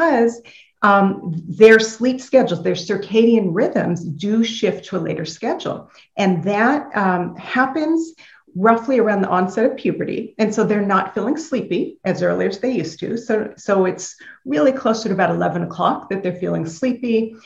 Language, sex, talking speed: English, female, 170 wpm